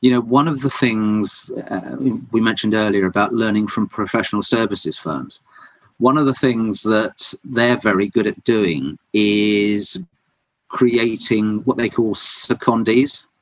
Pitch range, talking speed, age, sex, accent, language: 105-125 Hz, 145 wpm, 40-59, male, British, English